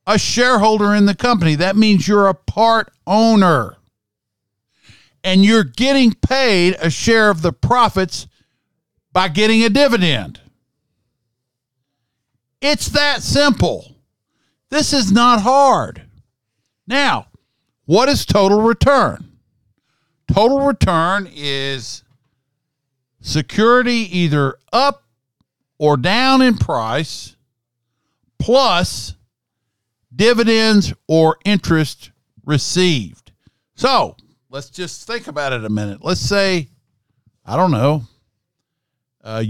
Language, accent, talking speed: English, American, 100 wpm